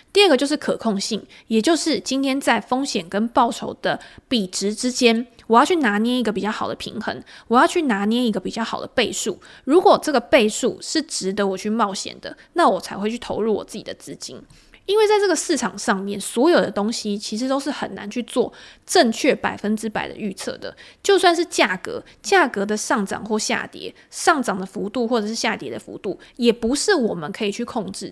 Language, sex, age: Chinese, female, 20-39